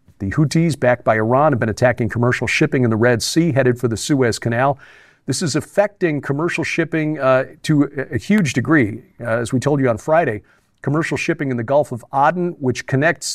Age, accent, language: 50-69, American, English